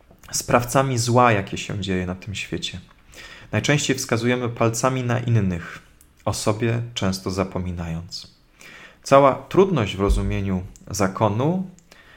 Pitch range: 95-120 Hz